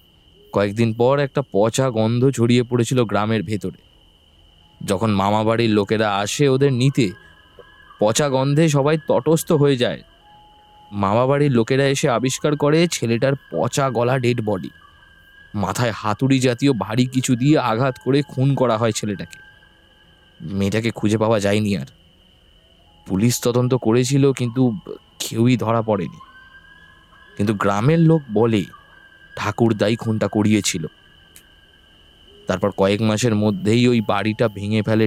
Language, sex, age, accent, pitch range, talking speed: Bengali, male, 20-39, native, 100-135 Hz, 110 wpm